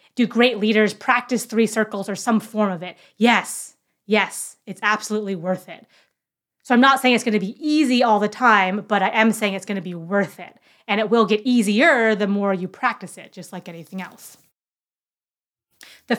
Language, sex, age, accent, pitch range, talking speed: English, female, 30-49, American, 195-235 Hz, 195 wpm